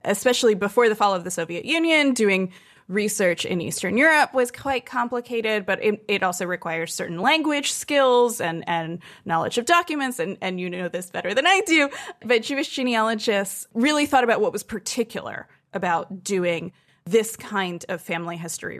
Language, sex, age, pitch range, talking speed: English, female, 20-39, 185-255 Hz, 170 wpm